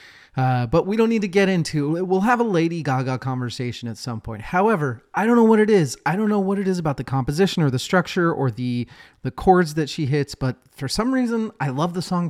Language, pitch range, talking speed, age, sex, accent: English, 130-175 Hz, 255 wpm, 30-49, male, American